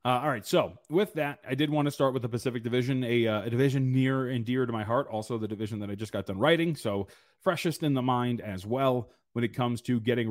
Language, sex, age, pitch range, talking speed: English, male, 30-49, 110-135 Hz, 270 wpm